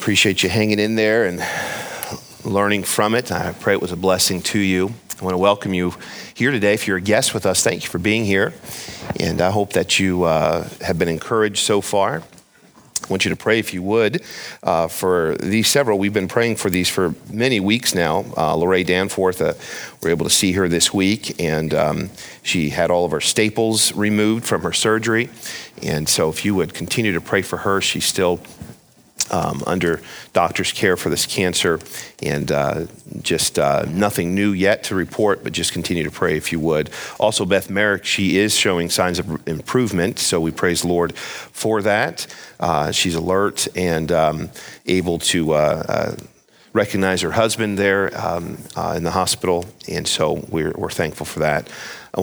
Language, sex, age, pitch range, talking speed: English, male, 40-59, 85-105 Hz, 190 wpm